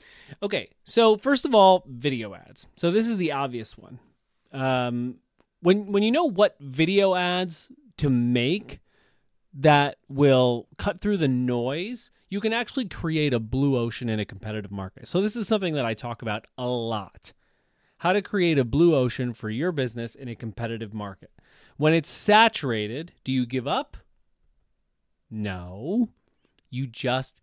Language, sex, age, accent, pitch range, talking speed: English, male, 30-49, American, 120-170 Hz, 160 wpm